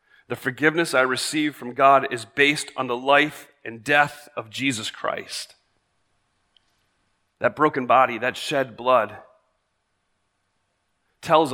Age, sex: 40-59, male